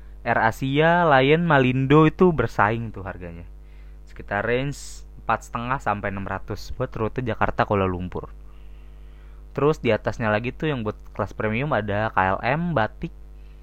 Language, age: Indonesian, 20-39